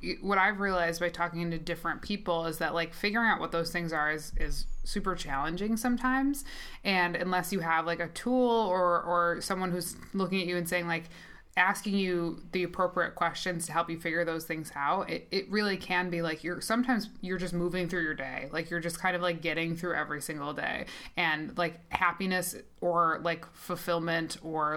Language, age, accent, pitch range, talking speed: English, 20-39, American, 165-185 Hz, 200 wpm